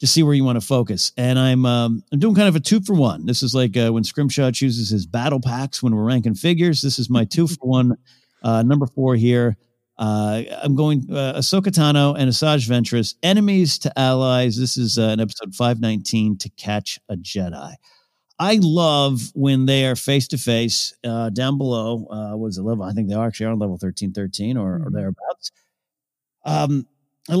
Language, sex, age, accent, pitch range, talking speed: English, male, 50-69, American, 120-150 Hz, 195 wpm